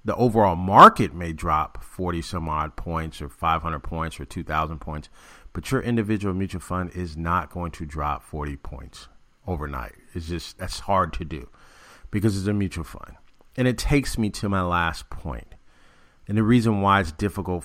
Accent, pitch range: American, 85-115 Hz